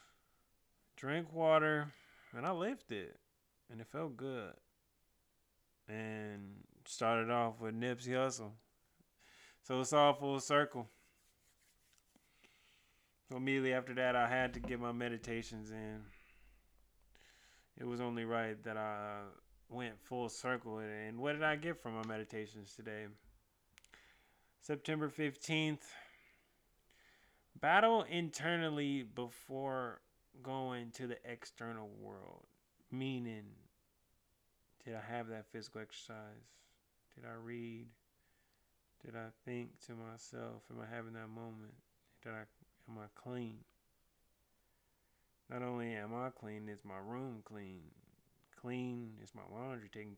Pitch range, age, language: 105-130 Hz, 20-39, English